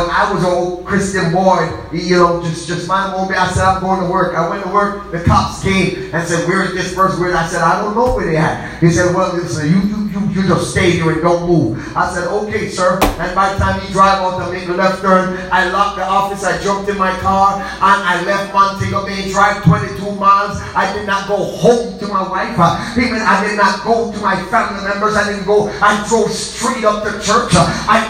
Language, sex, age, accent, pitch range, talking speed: English, male, 30-49, American, 190-235 Hz, 240 wpm